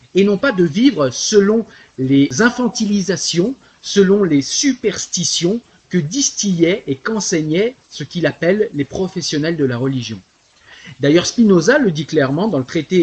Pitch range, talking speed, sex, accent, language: 145-210 Hz, 145 wpm, male, French, French